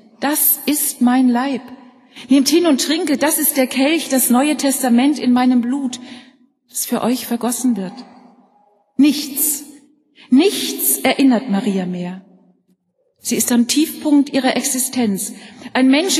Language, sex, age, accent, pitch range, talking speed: German, female, 40-59, German, 230-290 Hz, 135 wpm